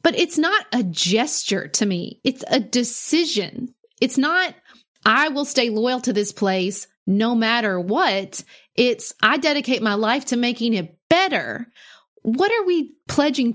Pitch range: 210-280 Hz